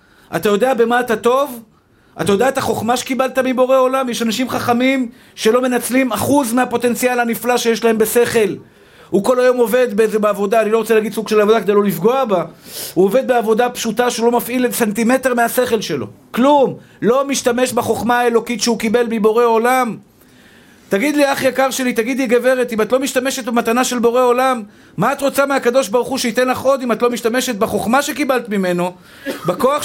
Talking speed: 180 wpm